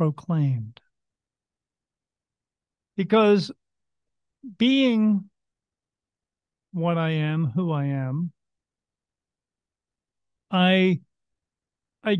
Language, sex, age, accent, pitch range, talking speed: English, male, 50-69, American, 140-180 Hz, 55 wpm